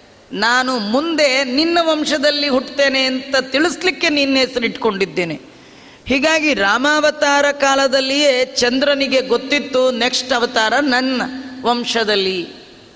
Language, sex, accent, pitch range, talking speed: Kannada, female, native, 250-285 Hz, 85 wpm